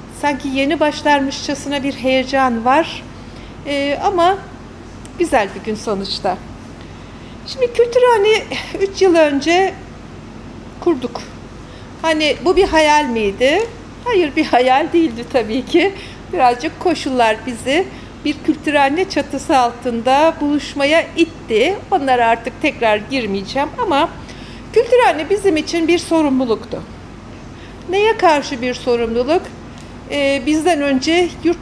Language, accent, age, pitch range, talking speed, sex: Turkish, native, 60-79, 265-335 Hz, 105 wpm, female